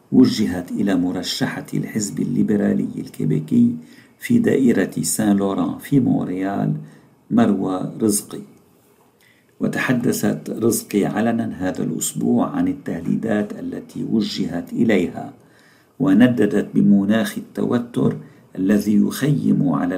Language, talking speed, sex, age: Arabic, 90 wpm, male, 50-69